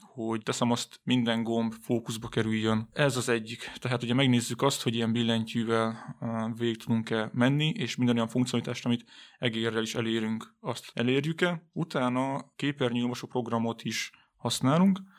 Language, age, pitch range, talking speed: Hungarian, 20-39, 115-140 Hz, 140 wpm